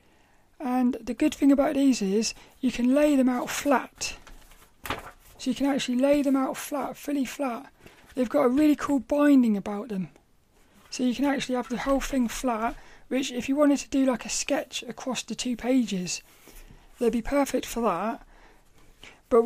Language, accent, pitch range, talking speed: English, British, 230-270 Hz, 180 wpm